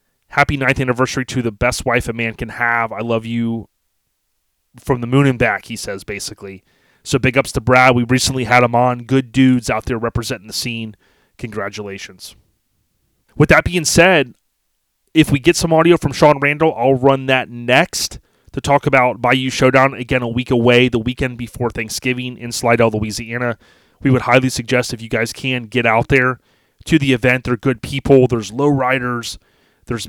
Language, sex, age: English, male, 30-49